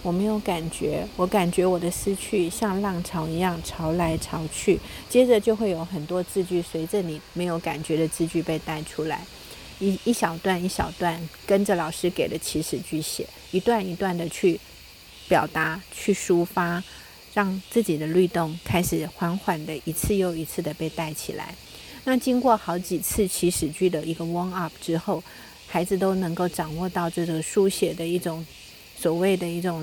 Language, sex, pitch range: Chinese, female, 165-190 Hz